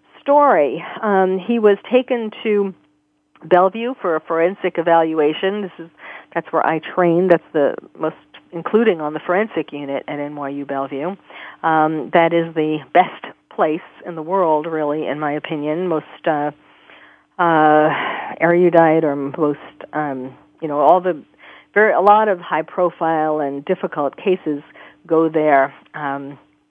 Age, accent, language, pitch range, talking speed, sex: 40-59, American, English, 150-185 Hz, 145 wpm, female